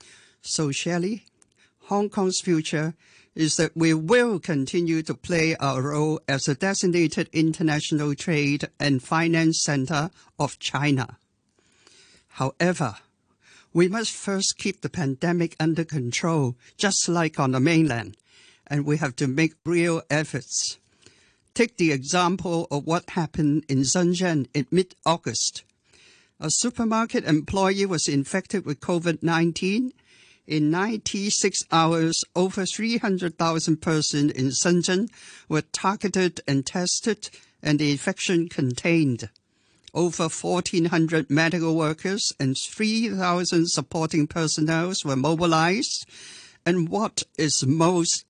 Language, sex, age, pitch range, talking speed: English, male, 60-79, 145-180 Hz, 115 wpm